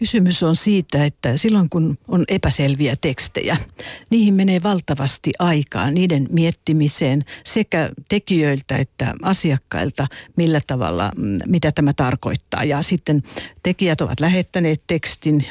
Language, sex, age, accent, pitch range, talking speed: Finnish, female, 60-79, native, 145-180 Hz, 115 wpm